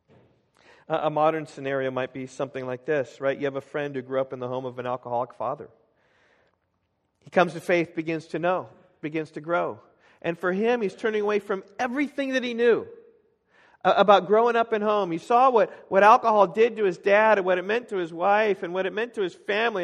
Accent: American